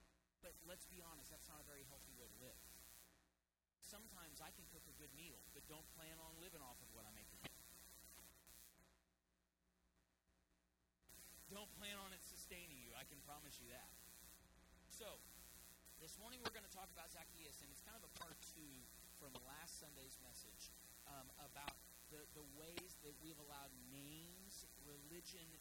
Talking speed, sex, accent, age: 165 wpm, male, American, 40-59